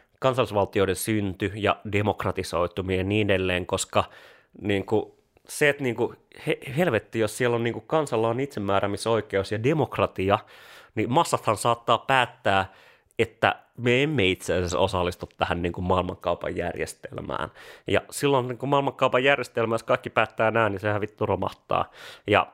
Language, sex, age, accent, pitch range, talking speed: Finnish, male, 30-49, native, 95-115 Hz, 140 wpm